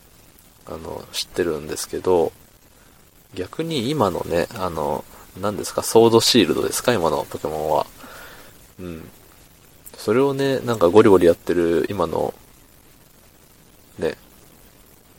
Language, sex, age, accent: Japanese, male, 20-39, native